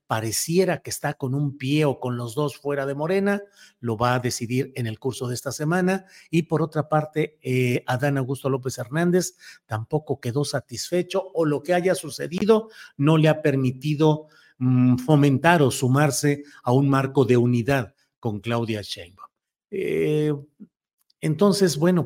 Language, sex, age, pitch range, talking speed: Spanish, male, 50-69, 130-175 Hz, 160 wpm